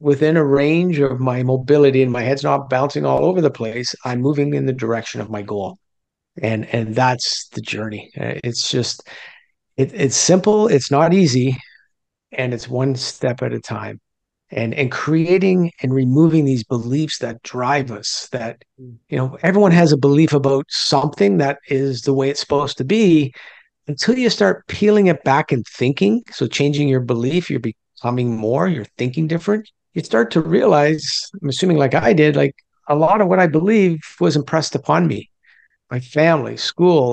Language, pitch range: English, 125-170 Hz